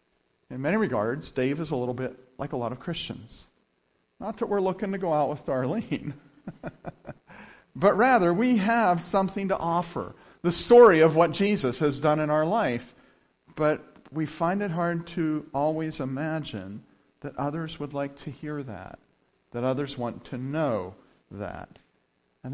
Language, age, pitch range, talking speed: English, 50-69, 130-185 Hz, 160 wpm